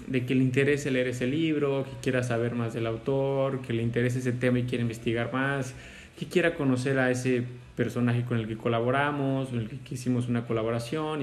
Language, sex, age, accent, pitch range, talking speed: Spanish, male, 20-39, Mexican, 115-130 Hz, 205 wpm